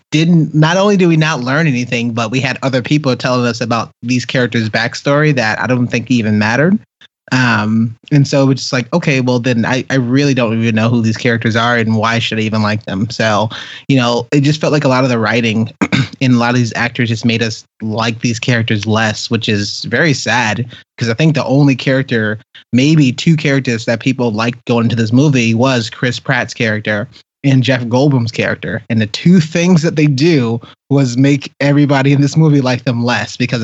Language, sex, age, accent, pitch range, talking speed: English, male, 30-49, American, 115-135 Hz, 215 wpm